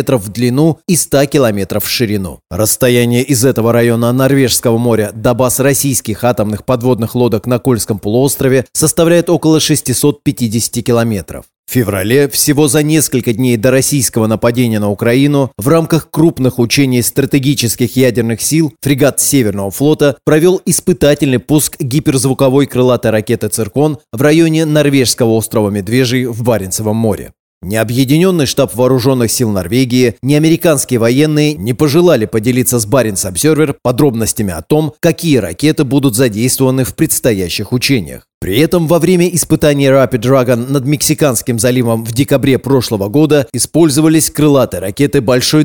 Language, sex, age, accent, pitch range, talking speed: Russian, male, 20-39, native, 115-145 Hz, 140 wpm